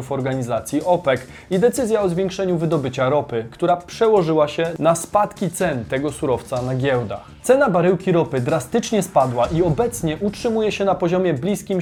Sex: male